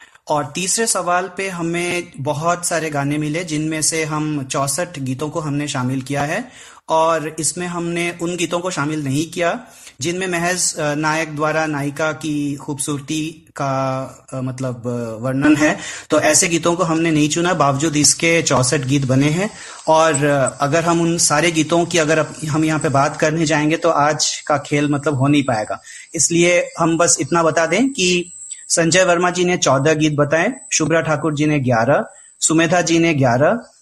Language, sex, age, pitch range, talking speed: Hindi, male, 30-49, 145-170 Hz, 170 wpm